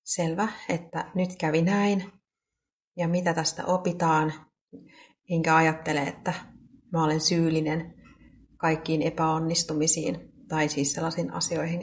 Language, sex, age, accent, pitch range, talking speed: Finnish, female, 30-49, native, 150-180 Hz, 105 wpm